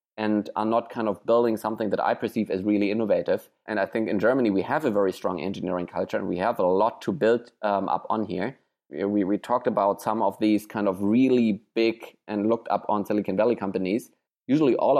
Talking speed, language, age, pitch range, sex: 225 wpm, English, 20-39, 100-115 Hz, male